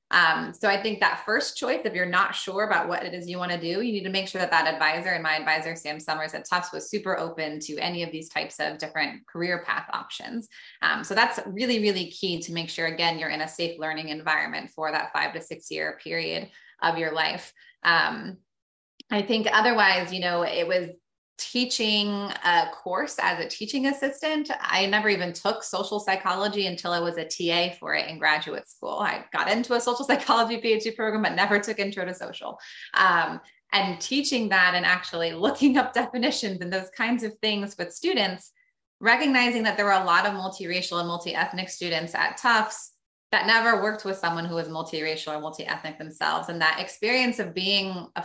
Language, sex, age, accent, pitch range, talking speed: English, female, 20-39, American, 170-220 Hz, 205 wpm